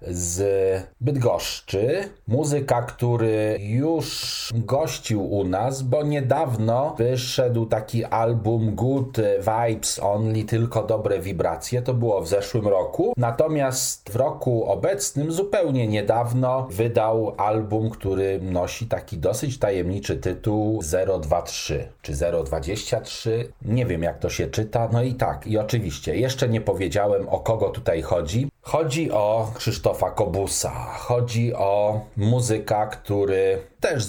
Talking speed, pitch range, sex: 120 wpm, 95-125 Hz, male